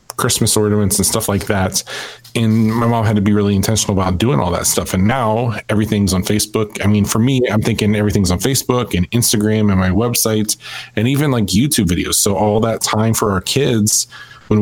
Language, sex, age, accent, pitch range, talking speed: English, male, 20-39, American, 95-110 Hz, 210 wpm